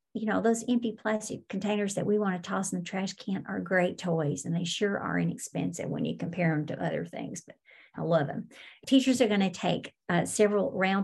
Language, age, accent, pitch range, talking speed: English, 50-69, American, 175-215 Hz, 230 wpm